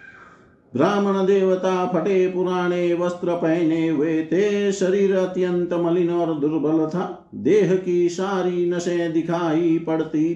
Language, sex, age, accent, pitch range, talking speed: Hindi, male, 50-69, native, 160-190 Hz, 110 wpm